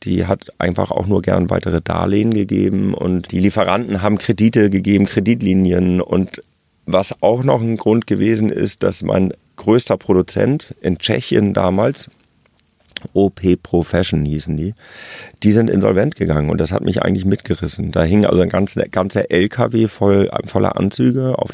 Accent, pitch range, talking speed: German, 90-110 Hz, 155 wpm